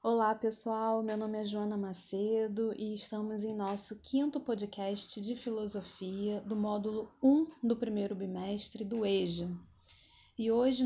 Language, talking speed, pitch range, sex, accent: Portuguese, 140 wpm, 200-250 Hz, female, Brazilian